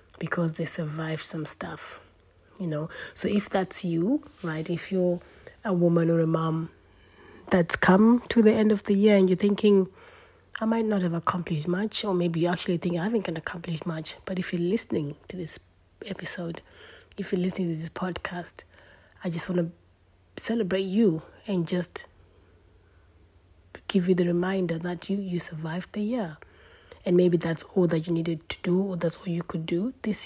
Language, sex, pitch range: English, female, 160-190 Hz